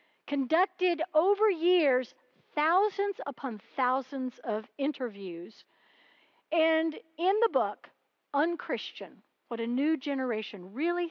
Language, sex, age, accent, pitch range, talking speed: English, female, 60-79, American, 230-325 Hz, 95 wpm